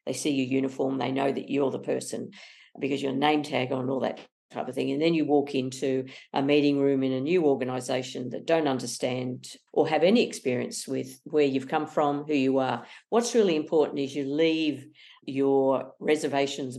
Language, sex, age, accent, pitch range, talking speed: English, female, 50-69, Australian, 130-150 Hz, 195 wpm